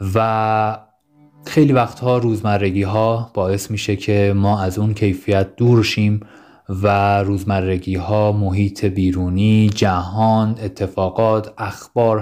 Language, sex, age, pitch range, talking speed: Persian, male, 20-39, 90-110 Hz, 105 wpm